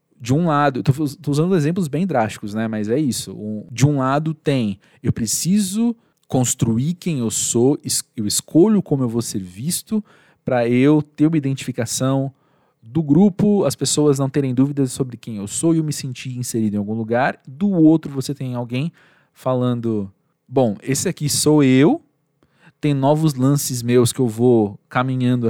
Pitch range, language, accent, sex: 115-155 Hz, Portuguese, Brazilian, male